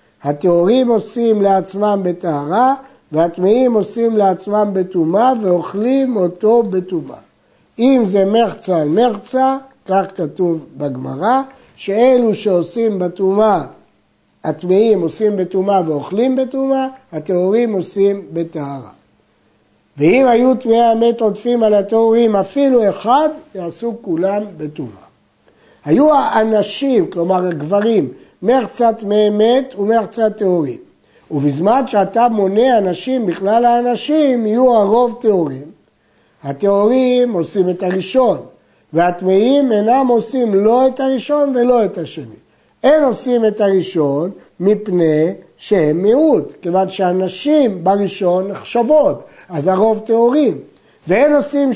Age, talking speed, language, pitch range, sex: 60-79, 95 wpm, Hebrew, 180-240 Hz, male